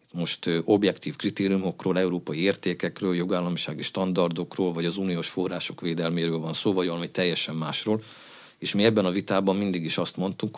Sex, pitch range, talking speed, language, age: male, 85-105 Hz, 160 wpm, Hungarian, 50-69